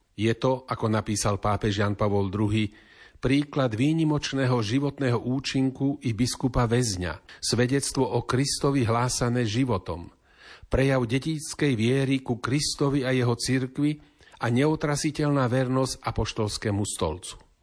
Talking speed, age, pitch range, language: 110 wpm, 40-59, 110-135 Hz, Slovak